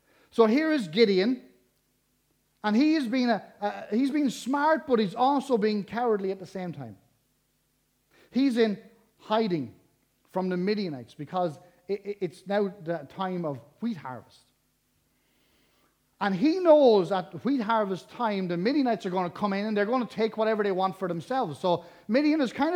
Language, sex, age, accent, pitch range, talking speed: English, male, 30-49, Irish, 165-235 Hz, 175 wpm